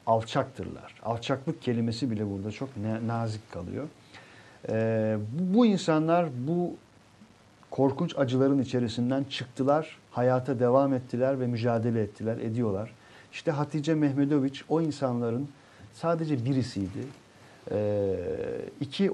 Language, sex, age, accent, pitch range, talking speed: Turkish, male, 50-69, native, 110-140 Hz, 95 wpm